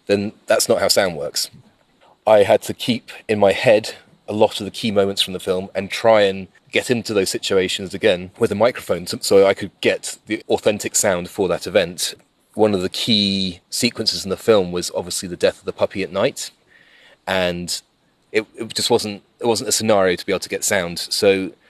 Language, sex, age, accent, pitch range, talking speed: English, male, 30-49, British, 95-105 Hz, 205 wpm